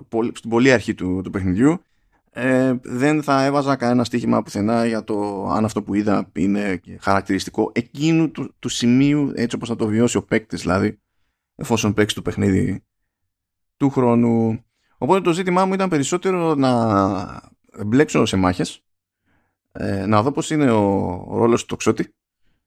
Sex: male